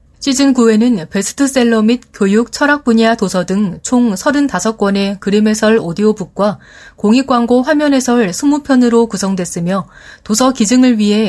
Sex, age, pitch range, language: female, 30-49, 190-245 Hz, Korean